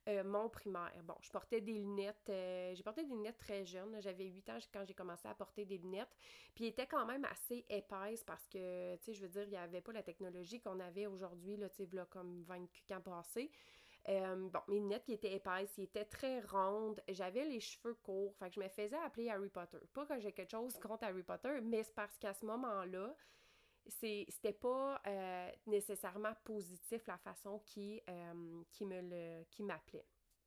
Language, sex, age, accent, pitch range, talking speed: French, female, 30-49, Canadian, 190-225 Hz, 205 wpm